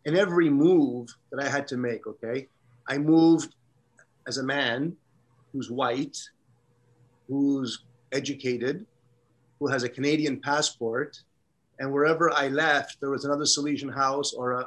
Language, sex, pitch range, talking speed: English, male, 120-145 Hz, 140 wpm